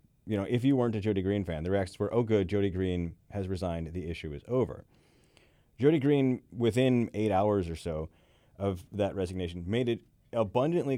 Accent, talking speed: American, 190 wpm